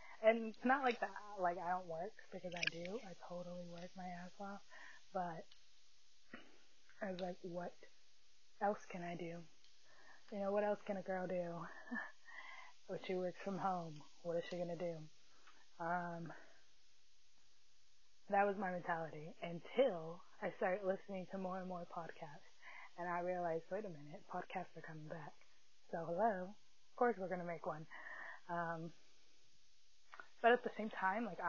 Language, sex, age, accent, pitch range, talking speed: English, female, 20-39, American, 170-200 Hz, 160 wpm